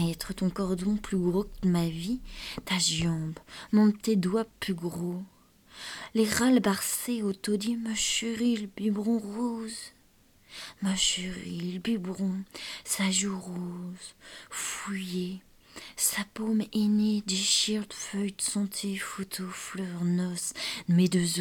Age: 20-39